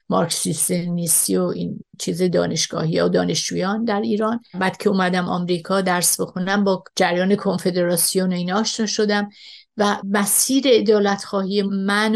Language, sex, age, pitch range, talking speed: Persian, female, 50-69, 185-210 Hz, 125 wpm